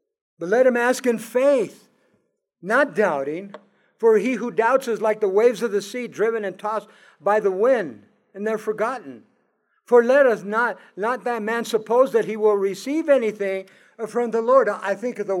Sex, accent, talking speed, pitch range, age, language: male, American, 185 wpm, 195-250 Hz, 60-79, English